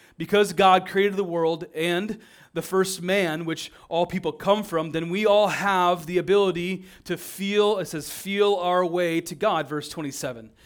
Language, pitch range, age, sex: English, 135-180 Hz, 30-49, male